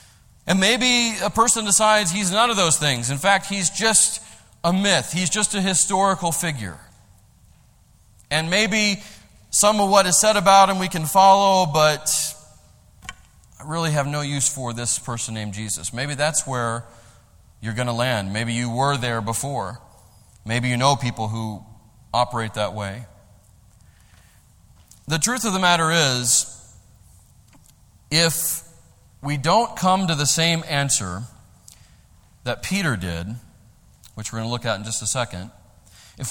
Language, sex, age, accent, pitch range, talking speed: English, male, 30-49, American, 110-170 Hz, 150 wpm